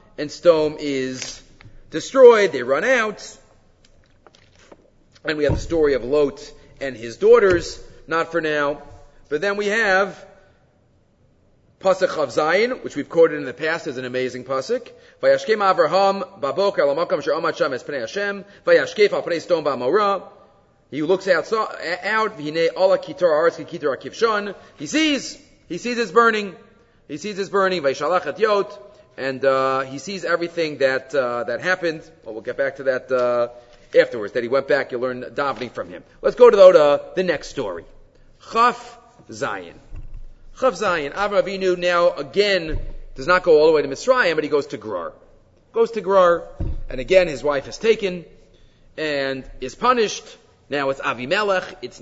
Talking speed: 140 wpm